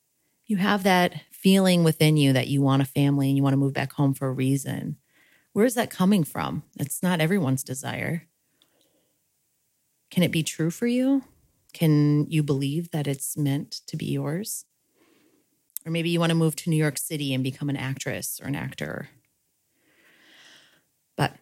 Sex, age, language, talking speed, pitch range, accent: female, 30-49, English, 175 wpm, 140-170 Hz, American